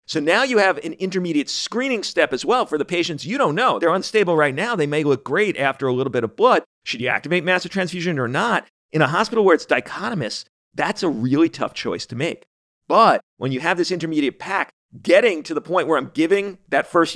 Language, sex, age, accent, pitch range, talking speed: English, male, 40-59, American, 130-190 Hz, 230 wpm